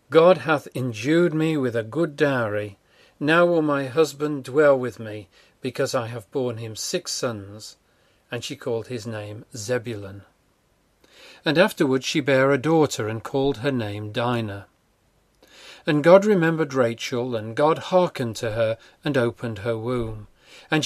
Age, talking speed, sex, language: 40-59, 150 wpm, male, English